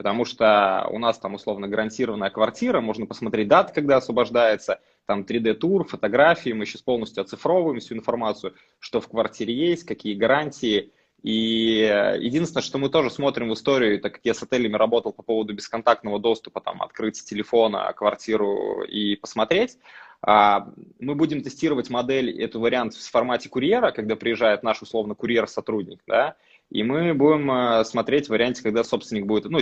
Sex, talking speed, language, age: male, 155 wpm, Russian, 20-39